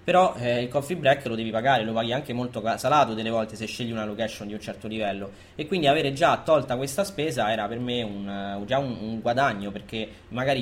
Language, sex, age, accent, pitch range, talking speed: Italian, male, 20-39, native, 115-140 Hz, 230 wpm